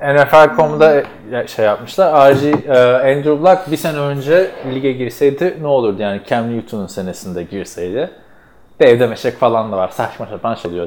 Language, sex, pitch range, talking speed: Turkish, male, 105-155 Hz, 155 wpm